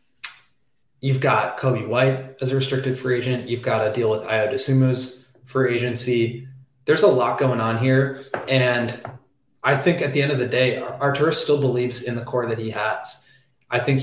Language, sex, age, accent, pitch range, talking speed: English, male, 20-39, American, 120-135 Hz, 190 wpm